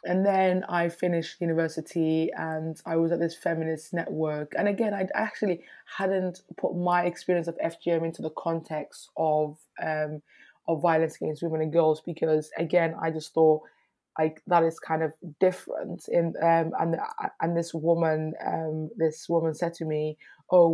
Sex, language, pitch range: female, English, 155-170 Hz